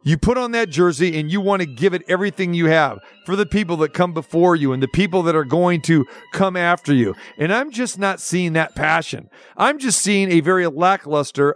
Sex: male